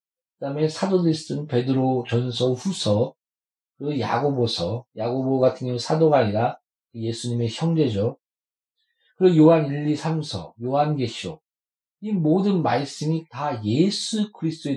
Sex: male